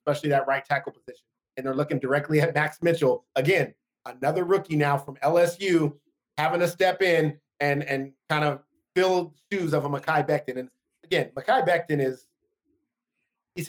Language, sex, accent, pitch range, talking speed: English, male, American, 135-170 Hz, 165 wpm